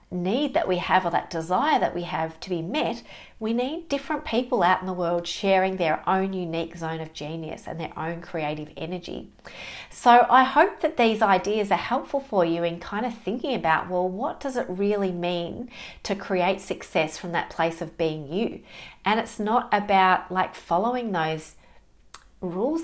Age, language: 40-59, English